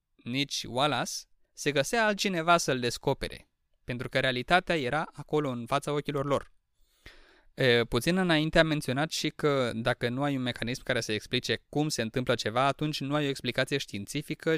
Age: 20-39